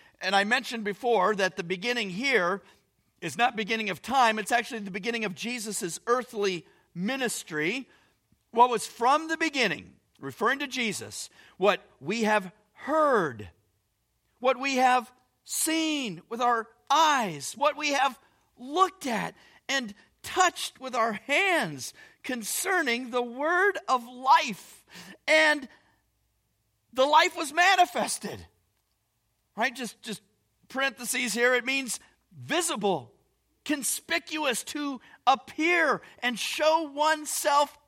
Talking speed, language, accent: 115 wpm, English, American